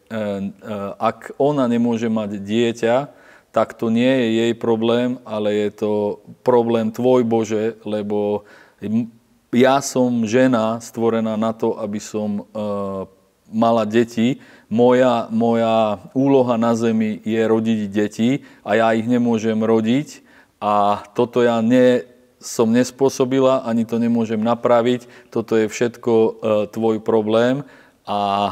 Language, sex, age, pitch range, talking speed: Slovak, male, 40-59, 105-120 Hz, 120 wpm